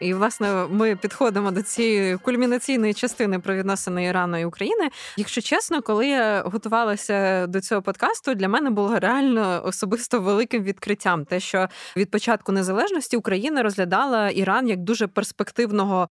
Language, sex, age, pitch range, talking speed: Ukrainian, female, 20-39, 190-225 Hz, 145 wpm